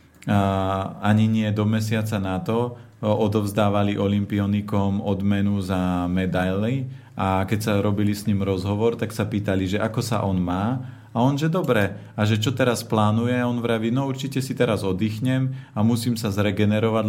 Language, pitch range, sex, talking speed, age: Slovak, 95-110 Hz, male, 165 wpm, 40-59